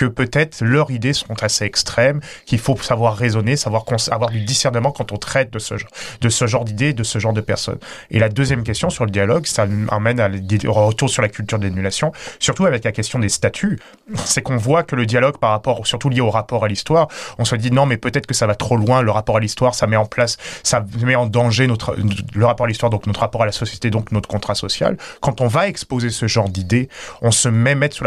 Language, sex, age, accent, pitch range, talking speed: English, male, 30-49, French, 110-135 Hz, 250 wpm